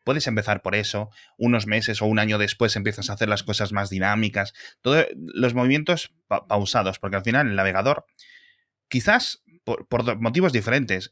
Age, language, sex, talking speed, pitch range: 20-39, Spanish, male, 165 wpm, 100-125 Hz